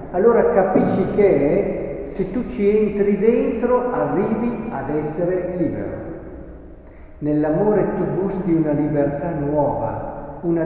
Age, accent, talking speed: 50-69, native, 115 wpm